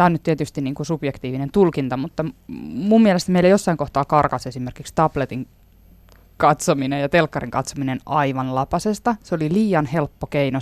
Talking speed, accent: 155 wpm, native